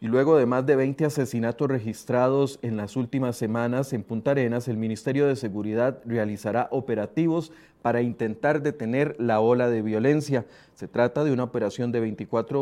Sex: male